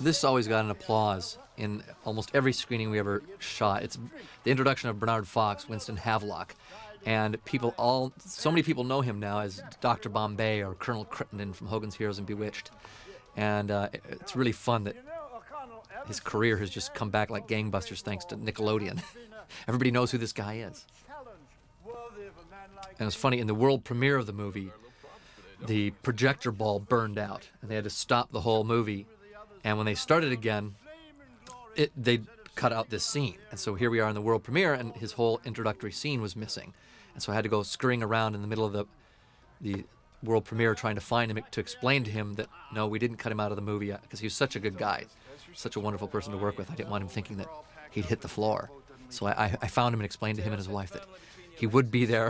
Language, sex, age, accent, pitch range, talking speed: English, male, 30-49, American, 105-125 Hz, 215 wpm